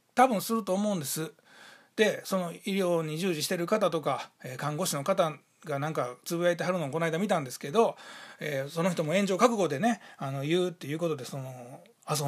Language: Japanese